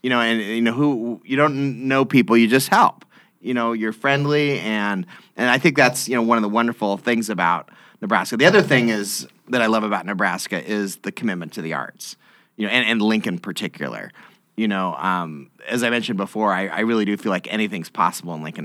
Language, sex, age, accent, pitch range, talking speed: English, male, 30-49, American, 90-115 Hz, 225 wpm